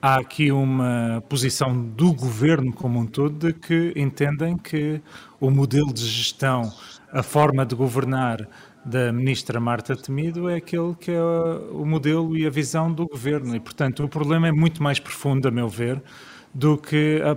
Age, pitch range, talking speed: 30-49, 125-150 Hz, 175 wpm